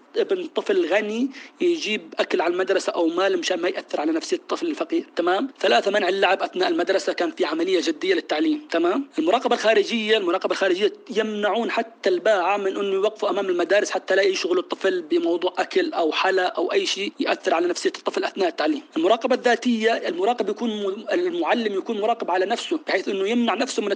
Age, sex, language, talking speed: 30-49, male, Arabic, 180 wpm